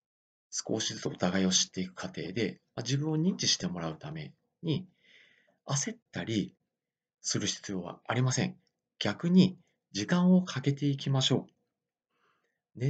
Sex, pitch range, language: male, 105-175 Hz, Japanese